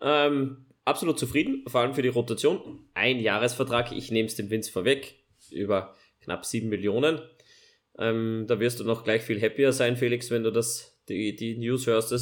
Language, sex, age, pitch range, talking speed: German, male, 20-39, 110-135 Hz, 180 wpm